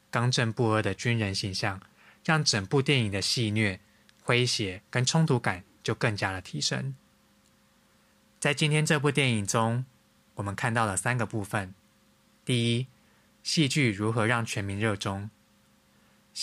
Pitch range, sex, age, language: 105-125 Hz, male, 20-39, Chinese